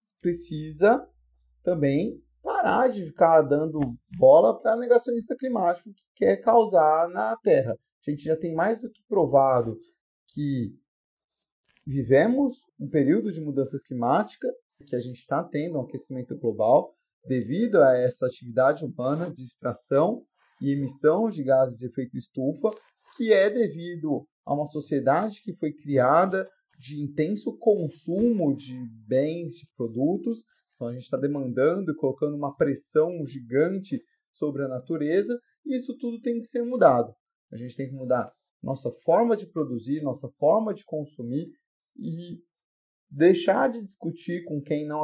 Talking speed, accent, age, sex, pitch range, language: 145 wpm, Brazilian, 30-49, male, 135-200 Hz, Portuguese